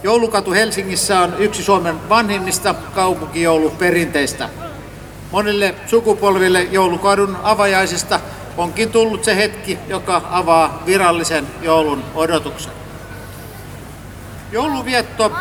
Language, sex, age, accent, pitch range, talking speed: Finnish, male, 50-69, native, 160-205 Hz, 80 wpm